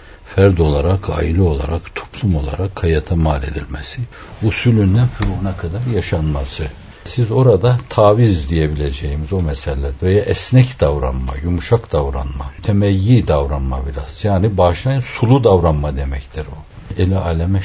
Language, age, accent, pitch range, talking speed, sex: Turkish, 60-79, native, 80-105 Hz, 120 wpm, male